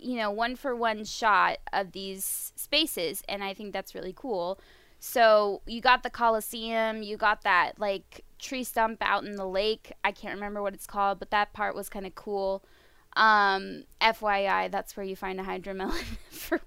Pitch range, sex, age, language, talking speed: 200-255 Hz, female, 10-29, English, 185 wpm